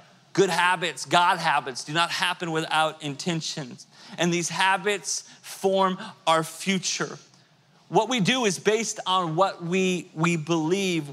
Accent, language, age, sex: American, English, 30-49, male